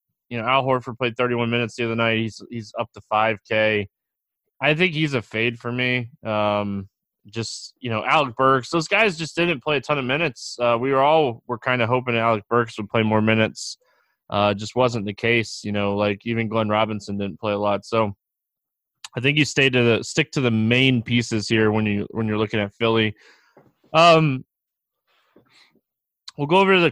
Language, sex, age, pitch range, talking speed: English, male, 20-39, 110-130 Hz, 205 wpm